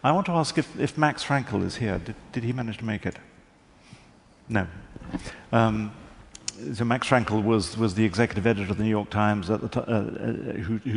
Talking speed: 200 wpm